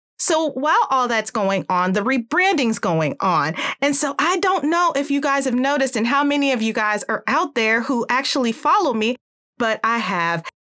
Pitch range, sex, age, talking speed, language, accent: 195-285 Hz, female, 30-49, 205 wpm, English, American